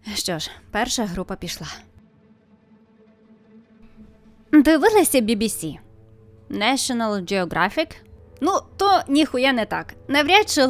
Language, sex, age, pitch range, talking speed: Ukrainian, female, 20-39, 200-255 Hz, 90 wpm